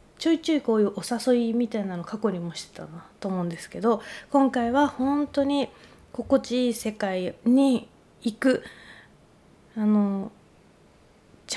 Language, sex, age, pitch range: Japanese, female, 20-39, 205-250 Hz